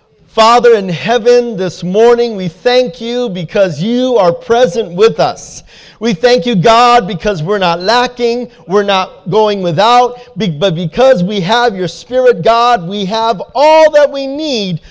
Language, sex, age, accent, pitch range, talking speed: English, male, 40-59, American, 190-245 Hz, 155 wpm